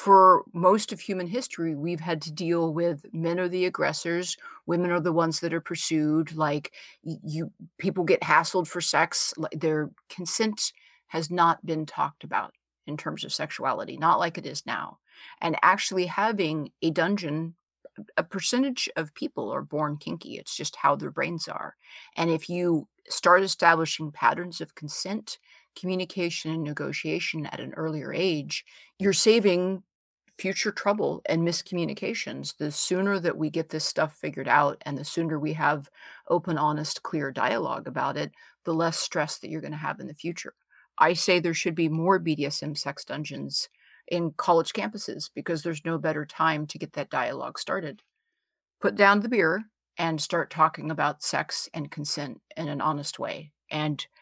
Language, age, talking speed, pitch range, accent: English, 30-49, 170 wpm, 155-180 Hz, American